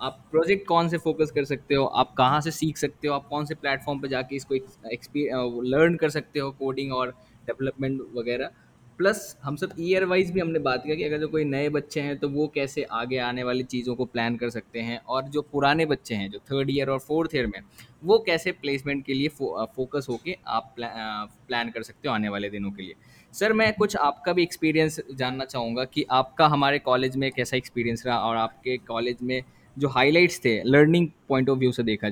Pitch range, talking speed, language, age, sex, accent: 120-150 Hz, 220 wpm, Hindi, 10-29, male, native